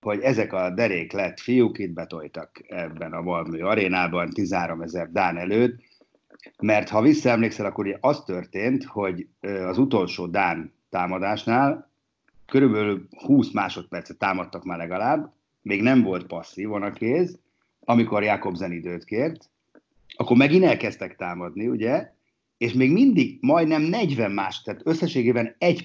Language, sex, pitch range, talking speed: Hungarian, male, 95-125 Hz, 135 wpm